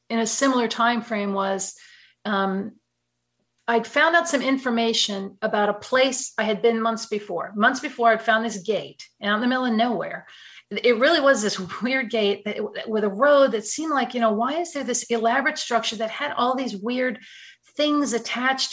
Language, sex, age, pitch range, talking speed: English, female, 40-59, 205-255 Hz, 200 wpm